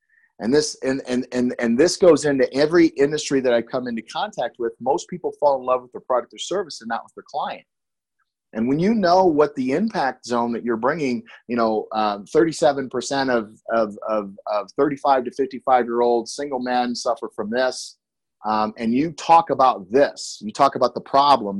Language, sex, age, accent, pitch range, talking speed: English, male, 30-49, American, 120-170 Hz, 195 wpm